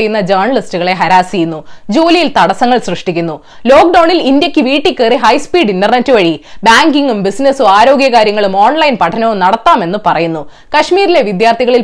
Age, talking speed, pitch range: 20-39, 110 wpm, 195-300 Hz